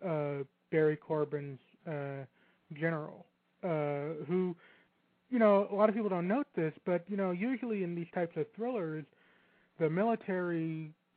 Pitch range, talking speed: 155-185 Hz, 145 wpm